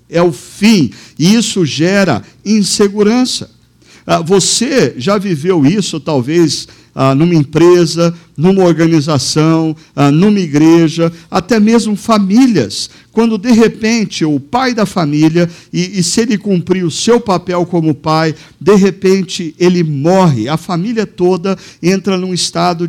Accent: Brazilian